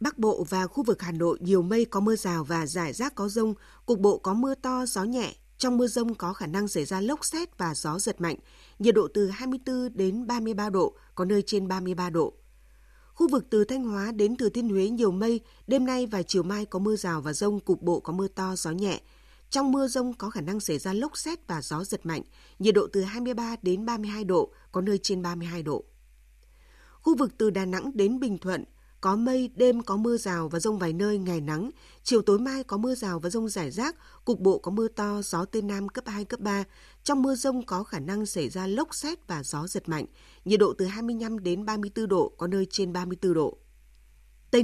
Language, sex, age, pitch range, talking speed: Vietnamese, female, 20-39, 180-235 Hz, 235 wpm